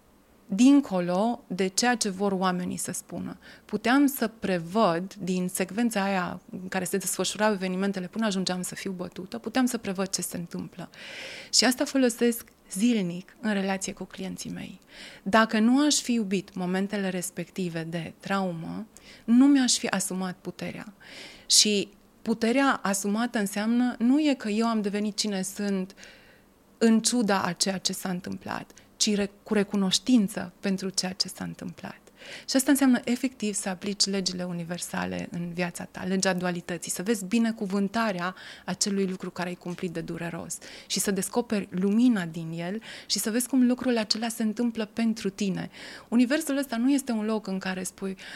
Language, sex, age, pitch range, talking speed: Romanian, female, 30-49, 185-230 Hz, 160 wpm